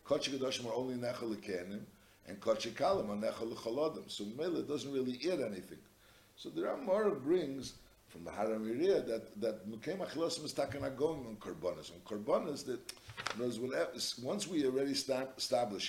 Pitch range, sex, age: 110-130 Hz, male, 60-79